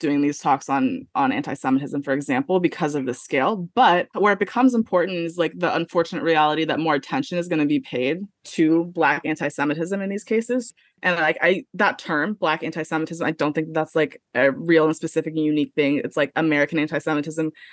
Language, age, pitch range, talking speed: English, 20-39, 155-185 Hz, 200 wpm